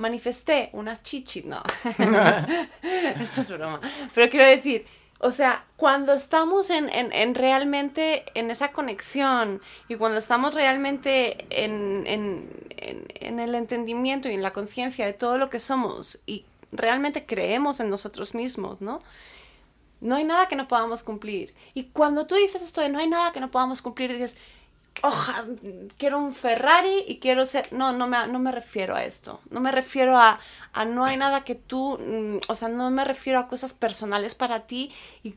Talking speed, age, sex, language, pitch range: 175 wpm, 30-49, female, Spanish, 220-265 Hz